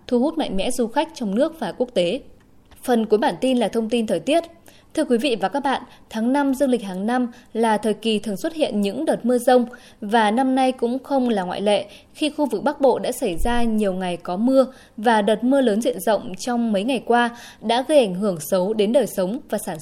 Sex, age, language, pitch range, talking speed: female, 20-39, Vietnamese, 210-270 Hz, 250 wpm